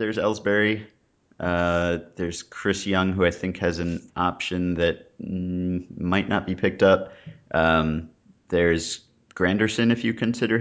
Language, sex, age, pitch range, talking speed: English, male, 30-49, 85-110 Hz, 135 wpm